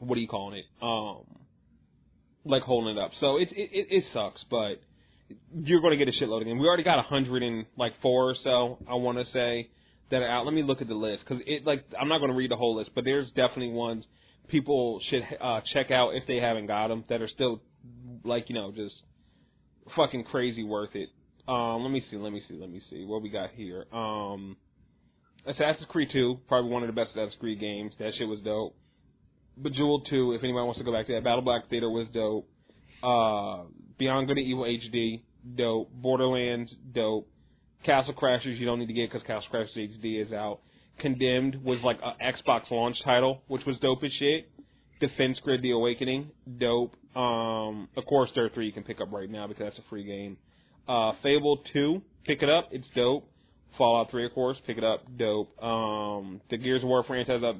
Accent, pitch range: American, 110-130 Hz